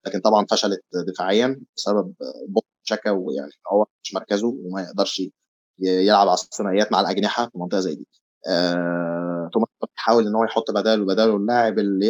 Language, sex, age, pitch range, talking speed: Arabic, male, 20-39, 95-120 Hz, 160 wpm